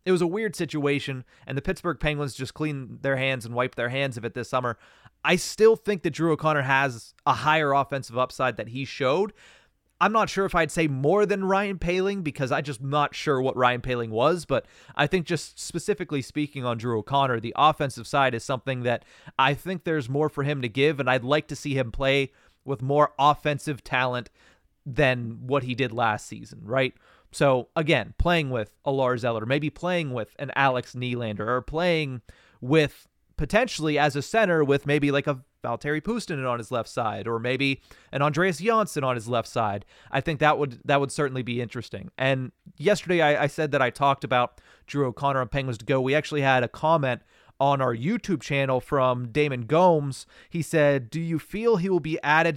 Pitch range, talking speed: 125-155 Hz, 205 wpm